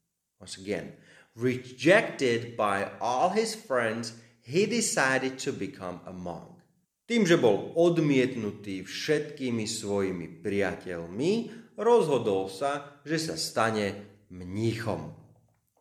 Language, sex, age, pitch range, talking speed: Slovak, male, 30-49, 95-145 Hz, 100 wpm